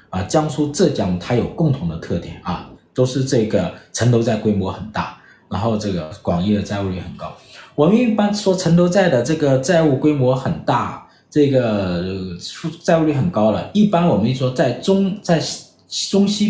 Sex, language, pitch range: male, Chinese, 100-165 Hz